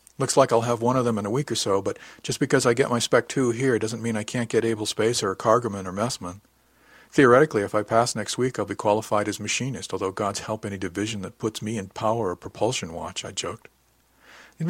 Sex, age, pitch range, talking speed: male, 50-69, 100-125 Hz, 240 wpm